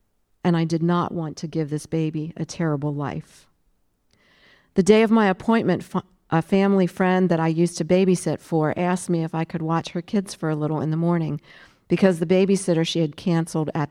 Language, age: English, 50-69